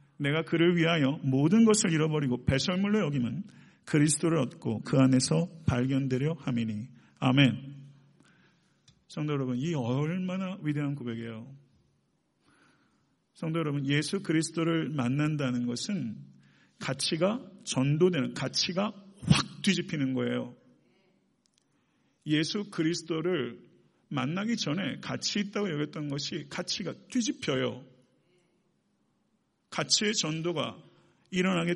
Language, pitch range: Korean, 135-180 Hz